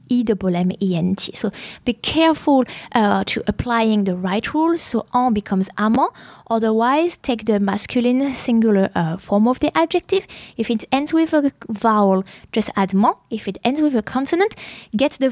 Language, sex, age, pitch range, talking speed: English, female, 20-39, 210-285 Hz, 160 wpm